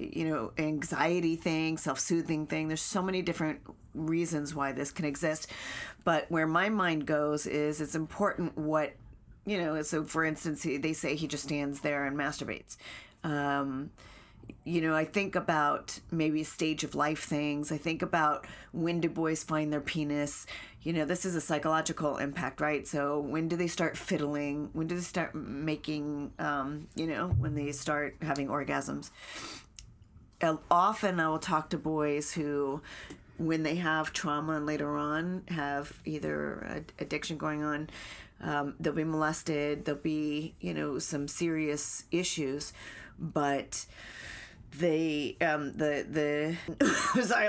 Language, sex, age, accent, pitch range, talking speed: English, female, 40-59, American, 145-160 Hz, 155 wpm